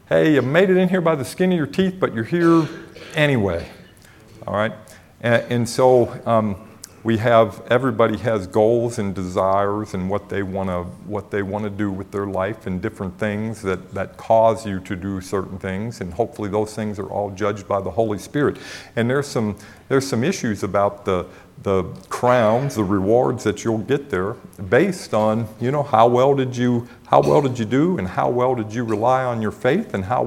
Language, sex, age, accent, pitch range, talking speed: English, male, 50-69, American, 100-120 Hz, 205 wpm